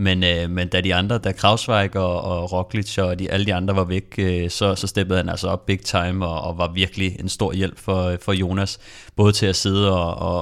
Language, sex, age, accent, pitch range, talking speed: Danish, male, 30-49, native, 90-105 Hz, 250 wpm